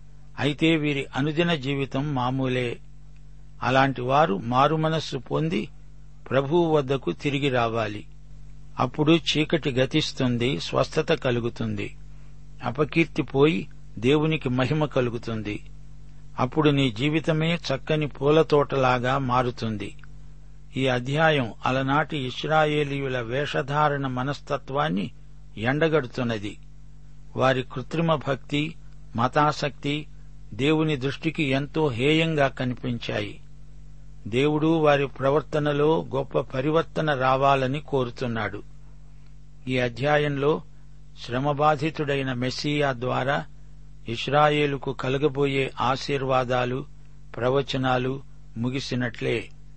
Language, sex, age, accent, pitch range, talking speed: Telugu, male, 60-79, native, 130-150 Hz, 70 wpm